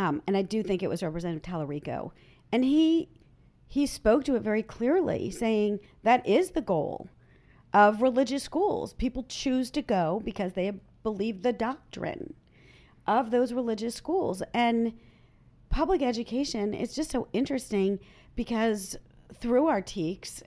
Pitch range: 190-265 Hz